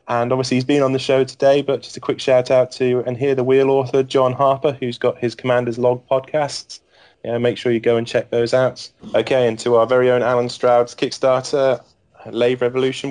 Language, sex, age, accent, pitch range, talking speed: English, male, 20-39, British, 110-130 Hz, 220 wpm